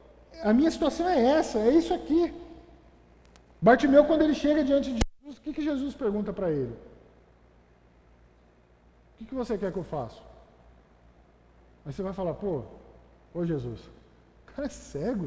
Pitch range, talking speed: 180-265 Hz, 160 wpm